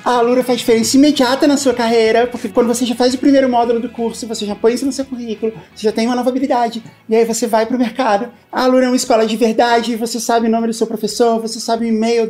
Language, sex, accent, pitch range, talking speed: Portuguese, male, Brazilian, 220-255 Hz, 270 wpm